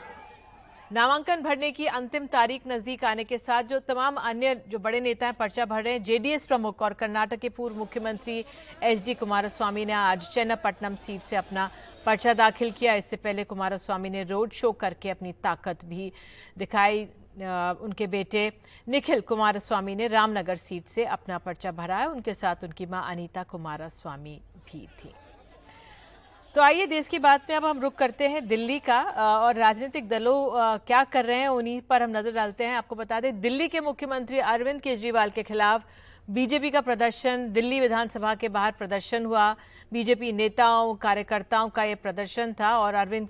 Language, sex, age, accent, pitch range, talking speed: Hindi, female, 50-69, native, 200-245 Hz, 170 wpm